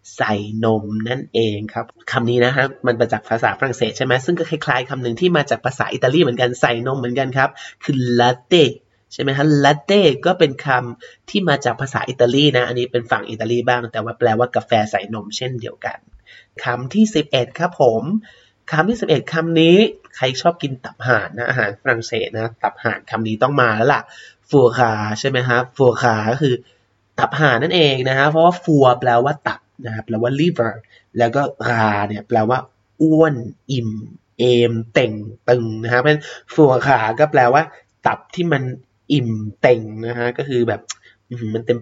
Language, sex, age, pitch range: Thai, male, 20-39, 115-150 Hz